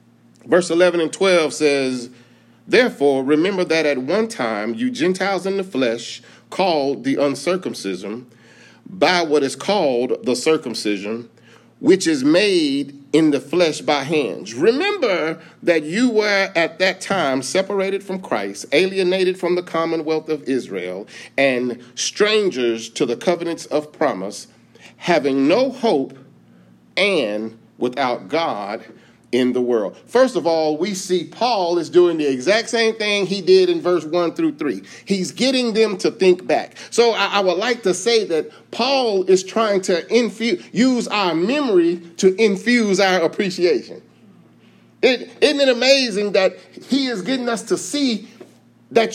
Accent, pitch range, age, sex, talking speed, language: American, 155-240 Hz, 40-59, male, 150 wpm, English